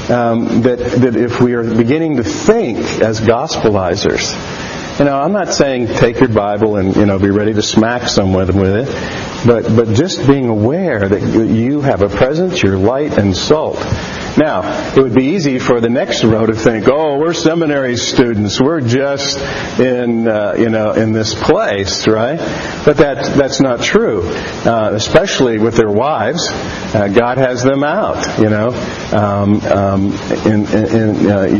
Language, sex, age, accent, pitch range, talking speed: English, male, 50-69, American, 105-130 Hz, 175 wpm